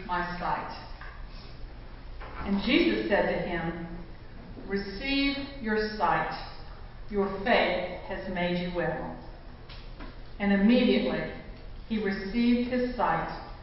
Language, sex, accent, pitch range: English, female, American, 190-245 Hz